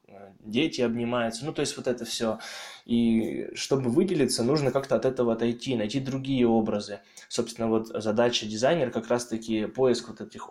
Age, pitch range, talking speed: 20-39, 110-120 Hz, 160 wpm